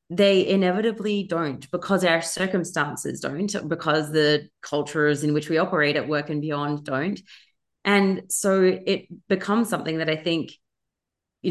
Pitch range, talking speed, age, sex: 150-180 Hz, 145 wpm, 30-49, female